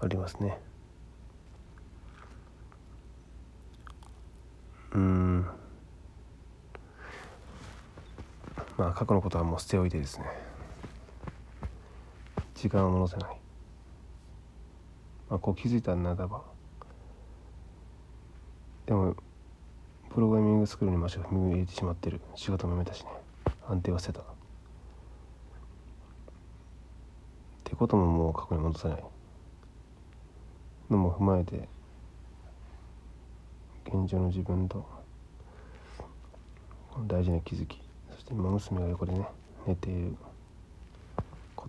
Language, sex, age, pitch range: Japanese, male, 40-59, 80-95 Hz